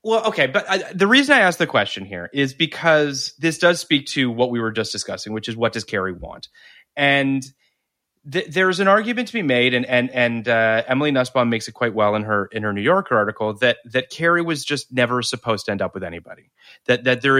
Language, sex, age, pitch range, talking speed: English, male, 30-49, 115-150 Hz, 240 wpm